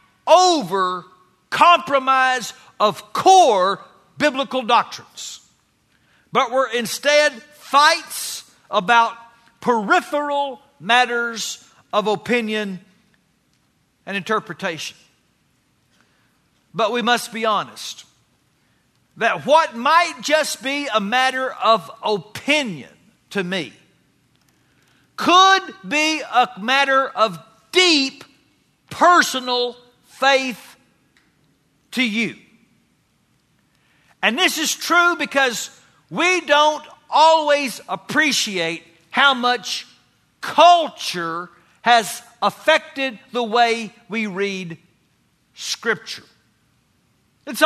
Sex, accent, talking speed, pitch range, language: male, American, 80 wpm, 215-290 Hz, English